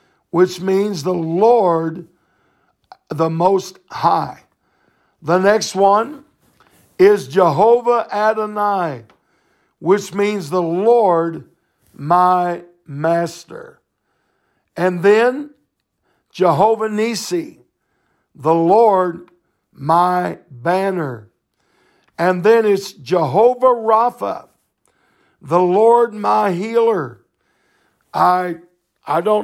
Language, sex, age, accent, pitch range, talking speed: English, male, 60-79, American, 170-200 Hz, 80 wpm